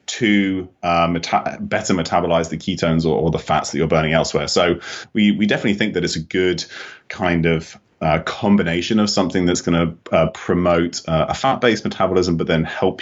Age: 30-49